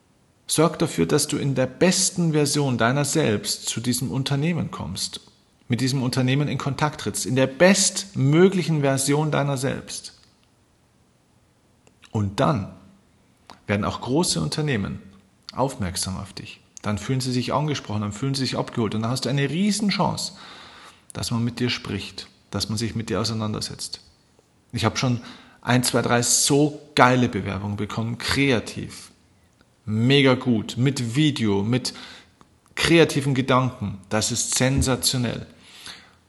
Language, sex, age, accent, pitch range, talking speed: German, male, 40-59, German, 120-155 Hz, 135 wpm